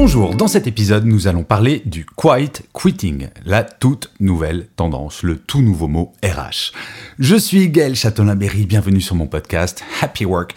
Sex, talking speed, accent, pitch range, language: male, 180 wpm, French, 90-120 Hz, French